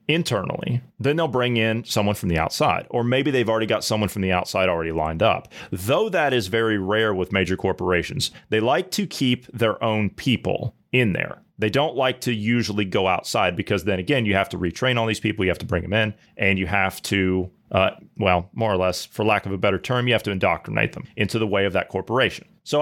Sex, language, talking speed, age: male, English, 230 wpm, 30-49